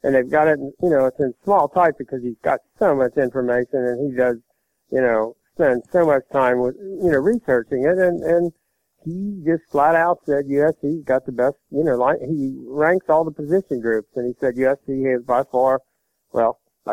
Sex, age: male, 60-79